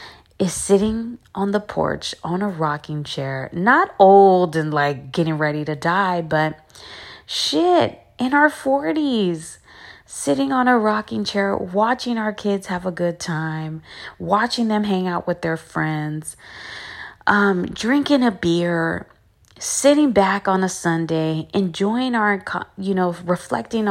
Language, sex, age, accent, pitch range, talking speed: English, female, 30-49, American, 155-200 Hz, 140 wpm